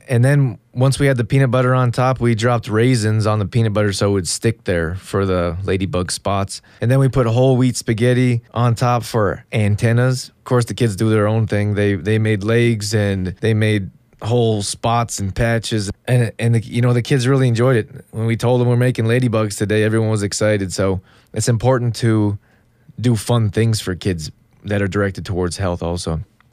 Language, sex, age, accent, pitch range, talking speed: English, male, 20-39, American, 100-120 Hz, 210 wpm